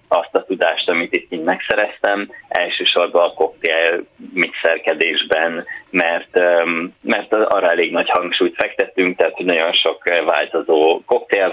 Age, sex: 20-39, male